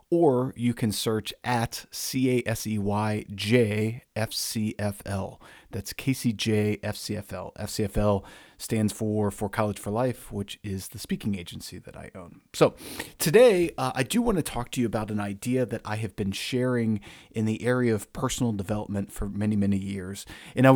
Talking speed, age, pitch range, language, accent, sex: 155 wpm, 40-59, 100-120 Hz, English, American, male